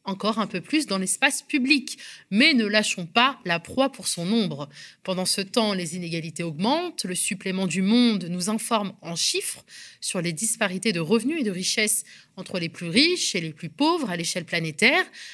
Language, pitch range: French, 180-245 Hz